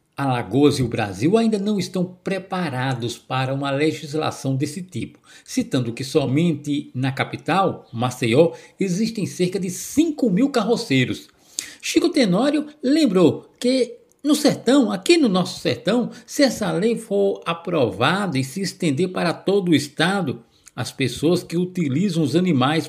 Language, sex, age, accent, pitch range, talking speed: Portuguese, male, 60-79, Brazilian, 135-205 Hz, 140 wpm